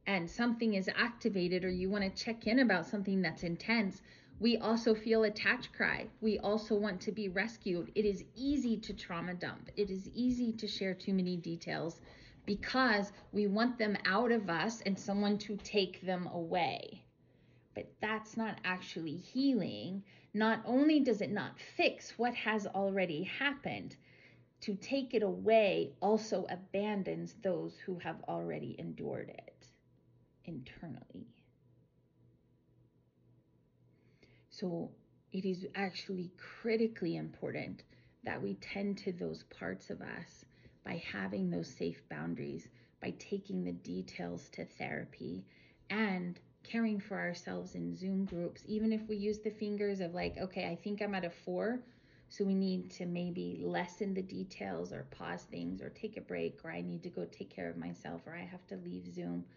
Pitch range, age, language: 170-215 Hz, 30-49, English